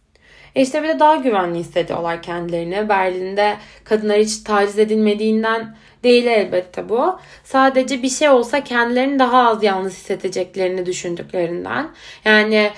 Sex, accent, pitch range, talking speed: female, native, 200-265 Hz, 120 wpm